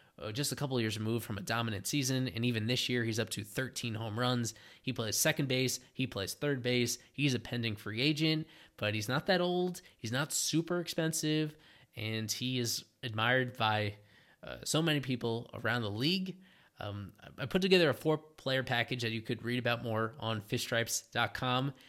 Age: 20-39